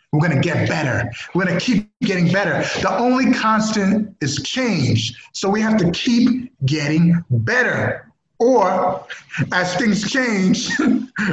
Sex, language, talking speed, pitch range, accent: male, English, 145 wpm, 155-220 Hz, American